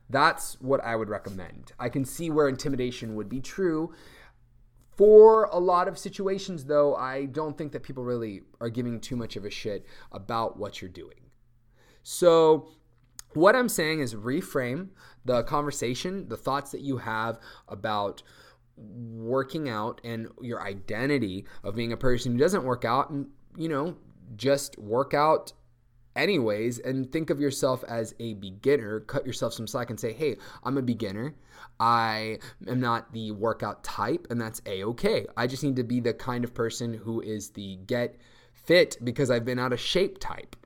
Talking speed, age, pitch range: 175 wpm, 20-39, 115-145 Hz